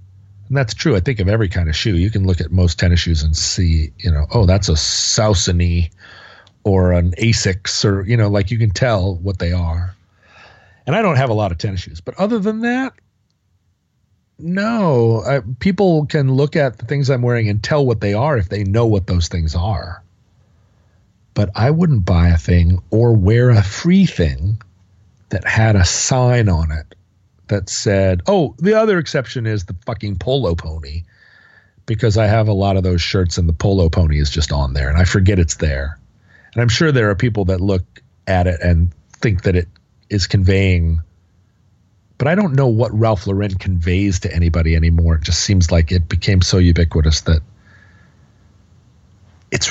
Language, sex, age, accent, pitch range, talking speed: English, male, 40-59, American, 90-115 Hz, 190 wpm